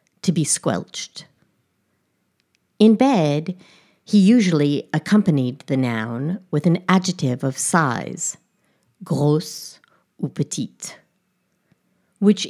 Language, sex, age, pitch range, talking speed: English, female, 60-79, 150-195 Hz, 90 wpm